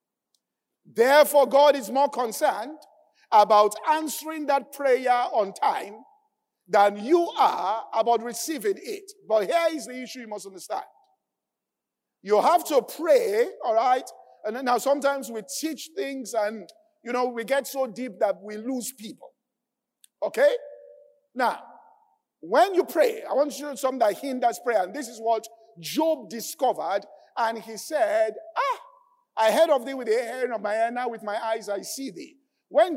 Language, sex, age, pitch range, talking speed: English, male, 50-69, 235-335 Hz, 170 wpm